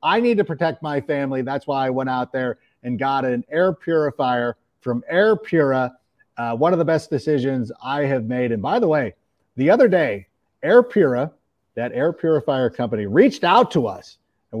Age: 50-69